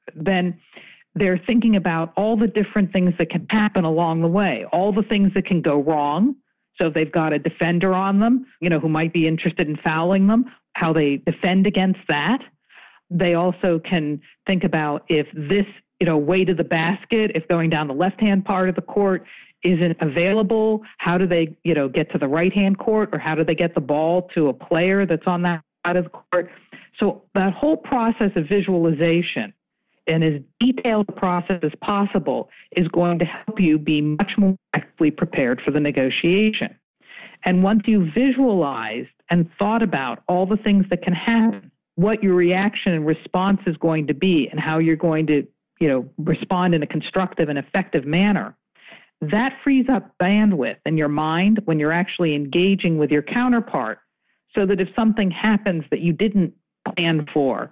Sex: female